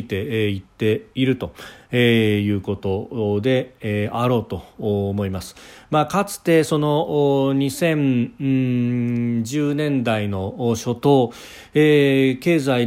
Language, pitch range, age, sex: Japanese, 100-130 Hz, 40-59, male